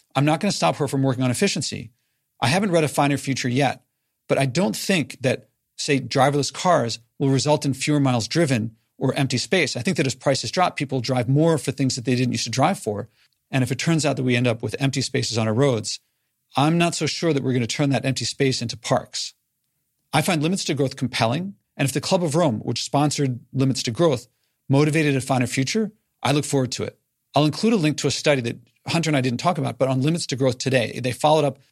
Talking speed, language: 245 wpm, English